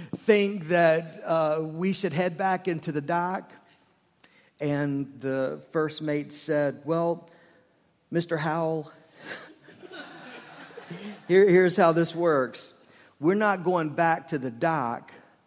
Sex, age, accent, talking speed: male, 50-69, American, 115 wpm